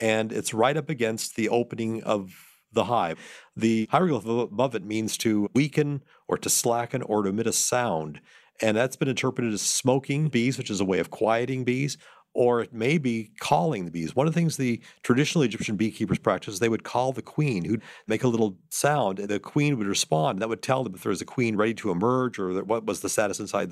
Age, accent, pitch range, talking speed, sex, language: 50-69, American, 110-130 Hz, 230 wpm, male, English